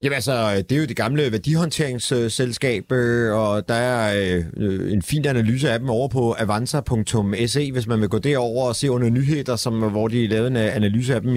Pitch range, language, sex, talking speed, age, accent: 115-150 Hz, Danish, male, 200 wpm, 30-49, native